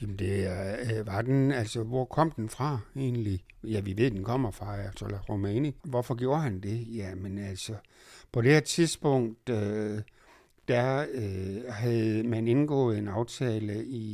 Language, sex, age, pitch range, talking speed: Danish, male, 60-79, 105-130 Hz, 160 wpm